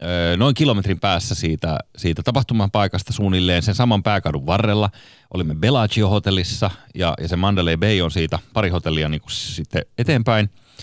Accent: native